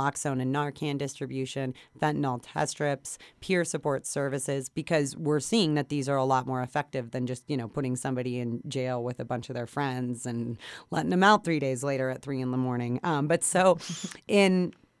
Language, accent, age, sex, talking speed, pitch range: English, American, 30-49, female, 200 wpm, 140-170 Hz